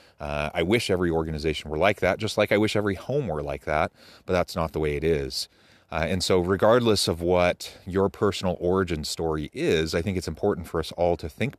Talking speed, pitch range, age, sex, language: 230 wpm, 80-100 Hz, 30-49, male, English